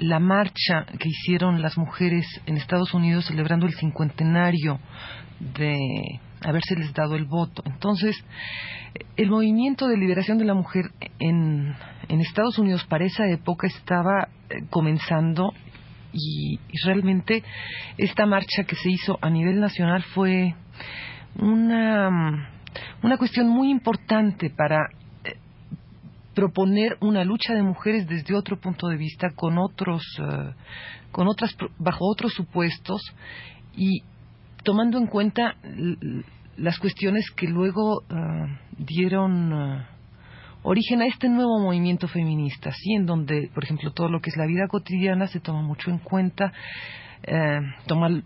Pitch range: 155-195 Hz